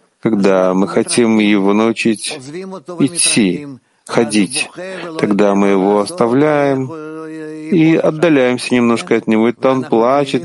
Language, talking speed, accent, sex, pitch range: Russian, 110 wpm, native, male, 110-145 Hz